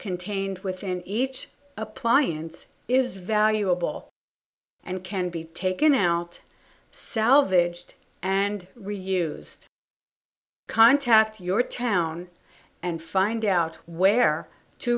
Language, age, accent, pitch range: English, 60-79, American, 175-250 Hz